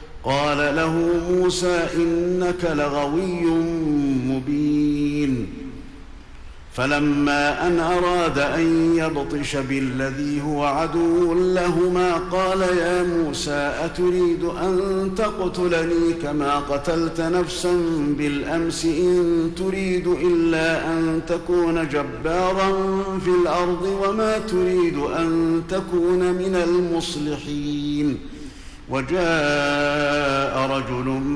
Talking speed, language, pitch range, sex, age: 80 wpm, Arabic, 145-180 Hz, male, 50-69